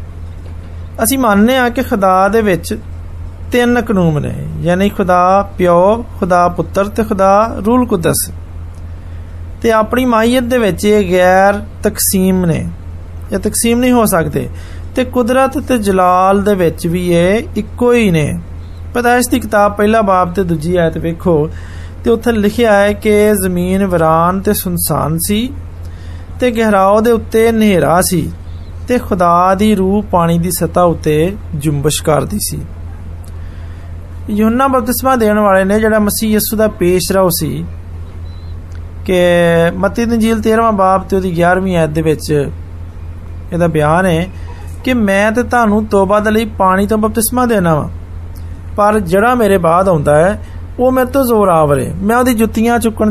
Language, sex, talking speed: Hindi, male, 95 wpm